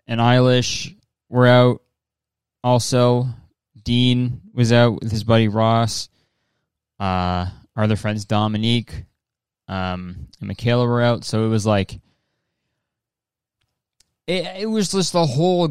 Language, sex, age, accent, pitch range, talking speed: English, male, 20-39, American, 105-140 Hz, 120 wpm